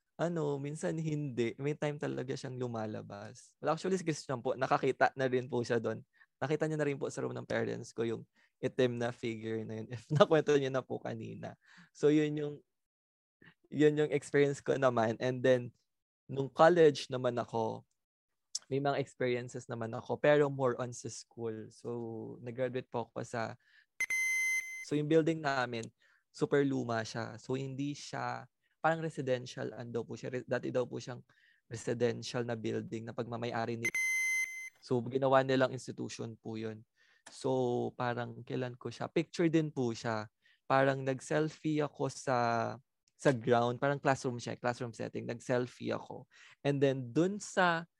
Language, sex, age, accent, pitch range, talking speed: English, male, 20-39, Filipino, 120-145 Hz, 160 wpm